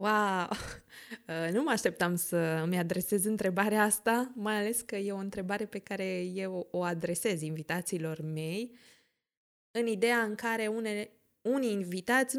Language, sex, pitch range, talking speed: Romanian, female, 170-215 Hz, 135 wpm